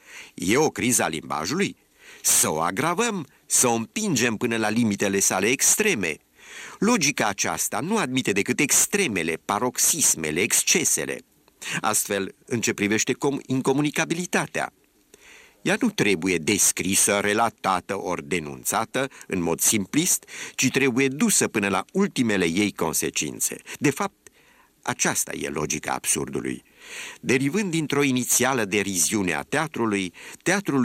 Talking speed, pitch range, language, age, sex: 115 wpm, 95-135 Hz, Romanian, 50-69, male